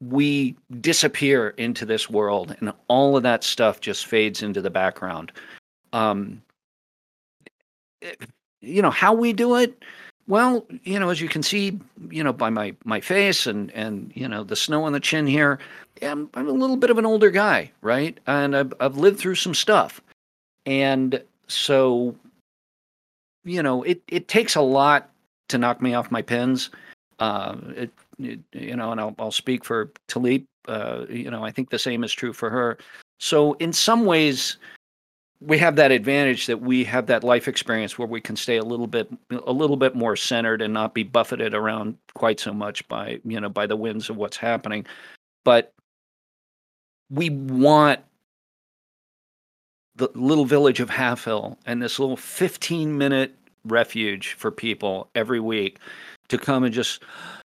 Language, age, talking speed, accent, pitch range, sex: English, 50-69, 175 wpm, American, 115-150 Hz, male